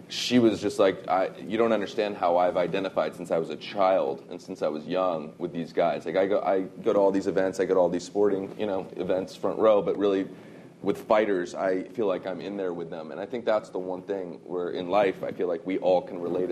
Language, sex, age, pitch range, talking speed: English, male, 30-49, 90-100 Hz, 265 wpm